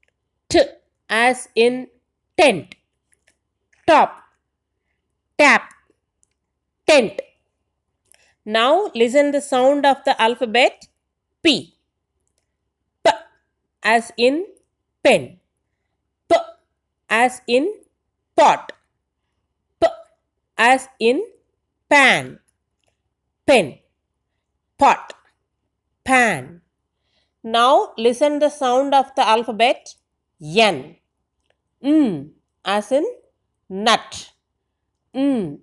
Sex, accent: female, native